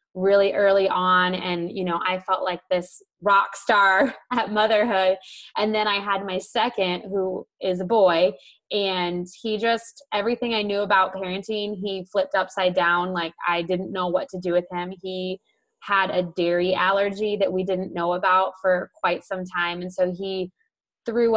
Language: English